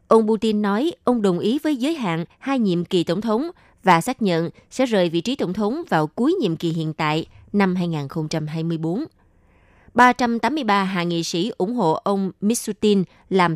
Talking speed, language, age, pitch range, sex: 175 wpm, Vietnamese, 20-39, 165-220 Hz, female